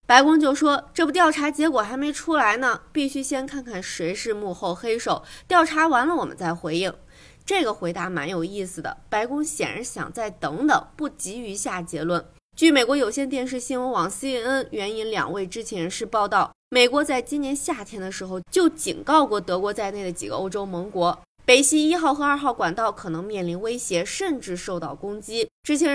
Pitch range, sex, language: 185-285 Hz, female, Chinese